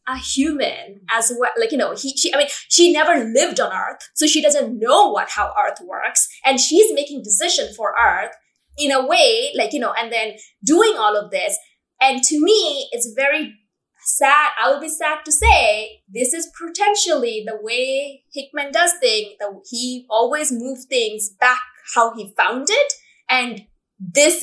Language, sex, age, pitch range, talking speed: English, female, 20-39, 220-310 Hz, 180 wpm